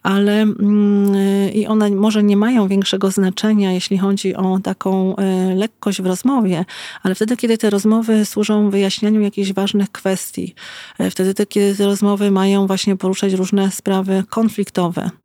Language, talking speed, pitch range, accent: Polish, 140 wpm, 185-200 Hz, native